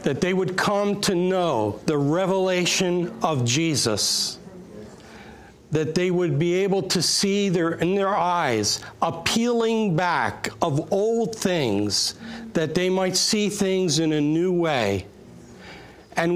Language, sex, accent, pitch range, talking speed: English, male, American, 160-215 Hz, 130 wpm